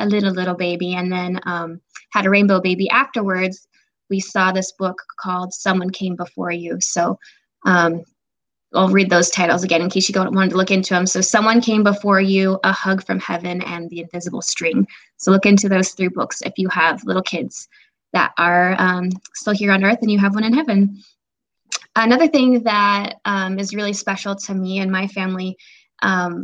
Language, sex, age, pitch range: English, female, 20-39, 185-220 Hz